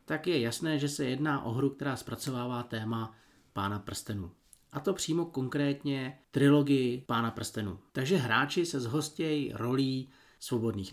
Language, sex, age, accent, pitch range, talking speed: Czech, male, 40-59, native, 115-145 Hz, 145 wpm